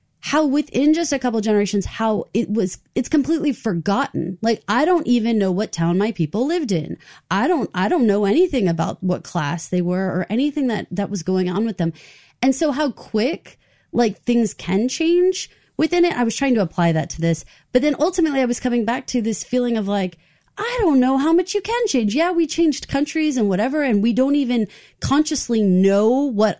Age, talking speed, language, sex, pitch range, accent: 30-49, 215 wpm, English, female, 205-305 Hz, American